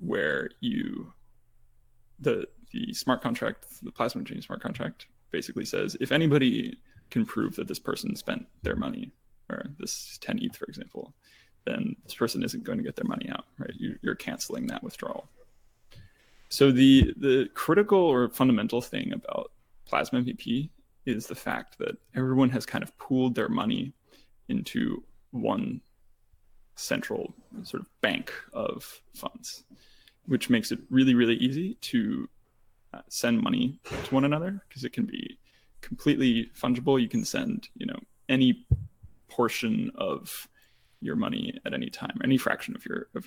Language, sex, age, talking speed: English, male, 20-39, 155 wpm